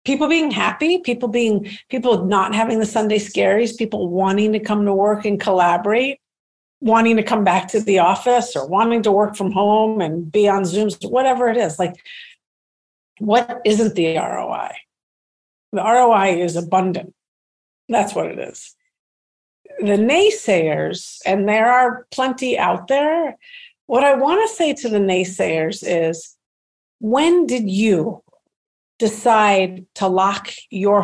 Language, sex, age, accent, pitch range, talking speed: English, female, 50-69, American, 185-240 Hz, 145 wpm